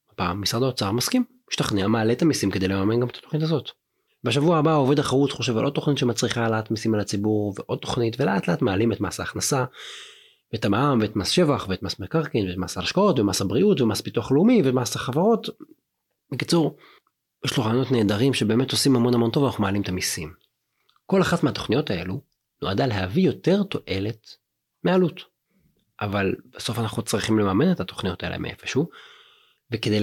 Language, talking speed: Hebrew, 160 wpm